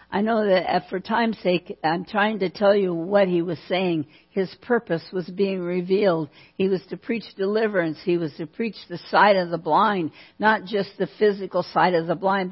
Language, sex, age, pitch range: English, female, 60-79, 170-205 Hz